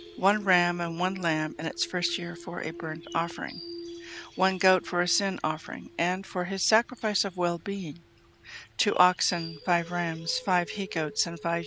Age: 60-79